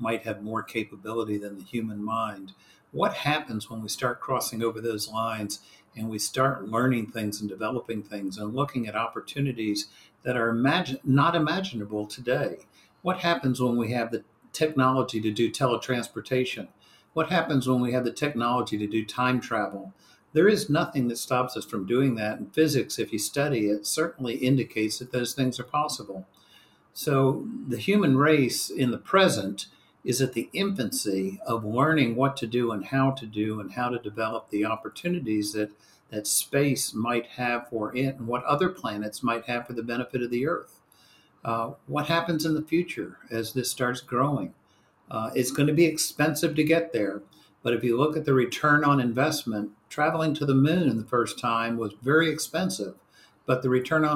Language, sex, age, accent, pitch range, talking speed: English, male, 60-79, American, 110-145 Hz, 180 wpm